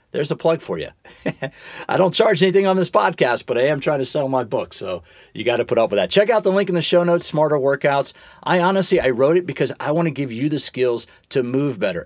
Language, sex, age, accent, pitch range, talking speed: English, male, 40-59, American, 135-175 Hz, 270 wpm